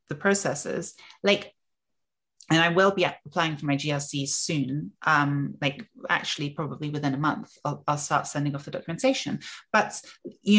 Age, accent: 30-49, British